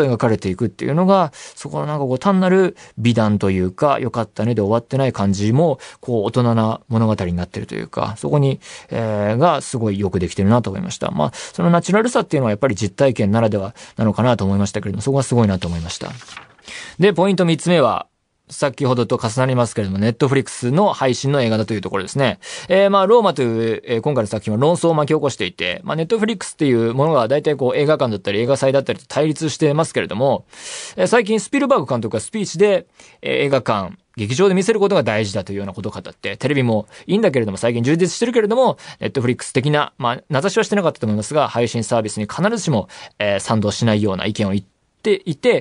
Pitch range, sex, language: 110-165 Hz, male, Japanese